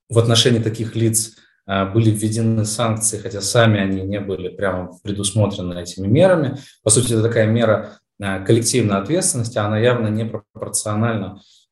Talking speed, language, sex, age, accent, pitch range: 140 wpm, Russian, male, 20-39, native, 100-120 Hz